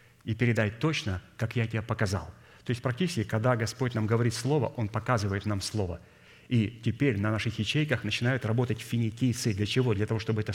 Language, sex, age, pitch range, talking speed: Russian, male, 30-49, 105-120 Hz, 190 wpm